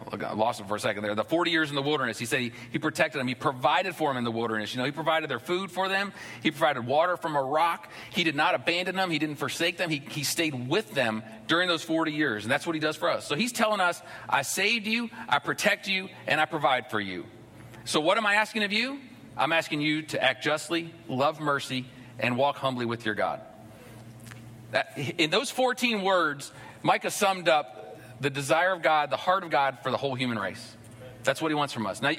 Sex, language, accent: male, English, American